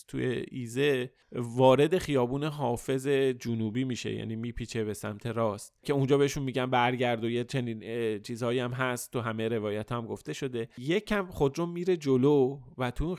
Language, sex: Persian, male